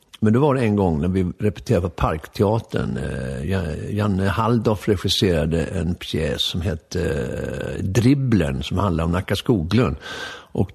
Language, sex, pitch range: English, male, 90-140 Hz